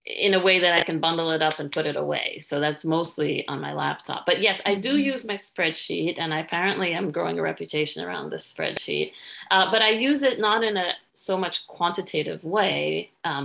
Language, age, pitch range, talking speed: English, 30-49, 160-200 Hz, 220 wpm